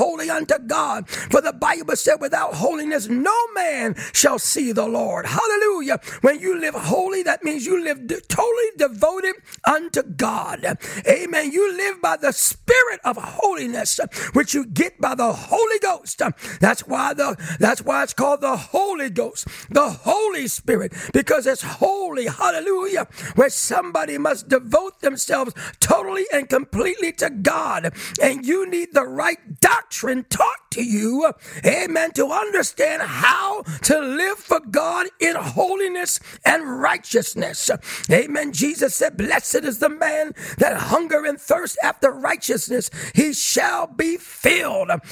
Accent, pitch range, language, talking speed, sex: American, 285-360 Hz, English, 145 wpm, male